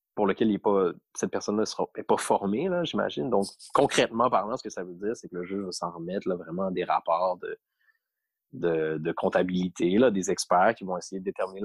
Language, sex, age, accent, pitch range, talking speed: French, male, 30-49, Canadian, 105-130 Hz, 225 wpm